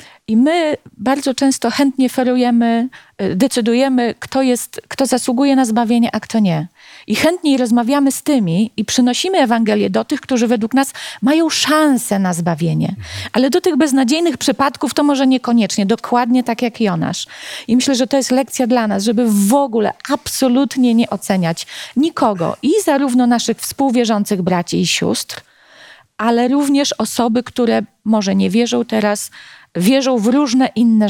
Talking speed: 150 wpm